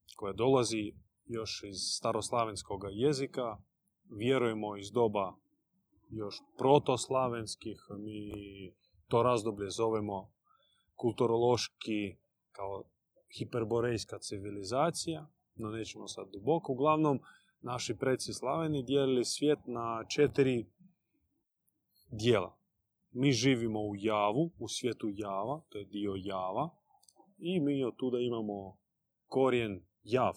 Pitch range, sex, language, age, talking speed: 105-140 Hz, male, Croatian, 30-49, 100 wpm